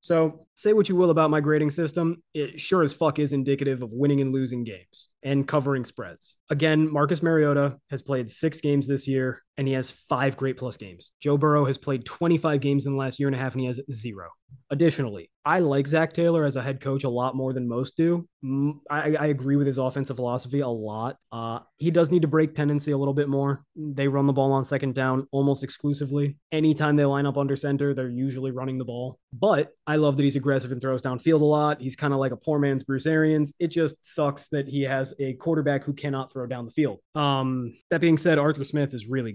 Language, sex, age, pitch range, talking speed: English, male, 20-39, 130-150 Hz, 235 wpm